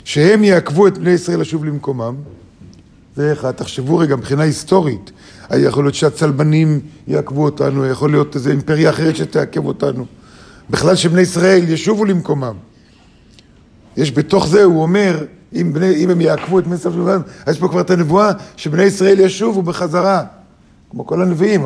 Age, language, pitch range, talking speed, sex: 50-69, Hebrew, 140-190 Hz, 140 wpm, male